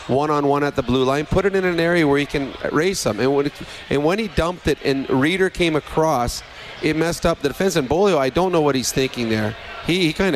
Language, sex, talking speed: English, male, 265 wpm